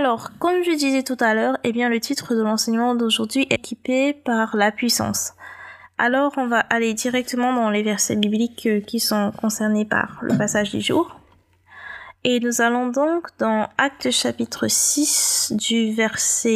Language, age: French, 20-39